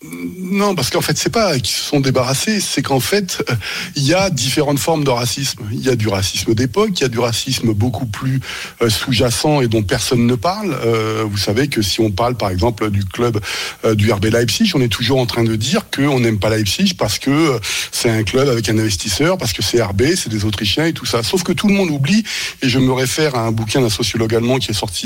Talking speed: 250 wpm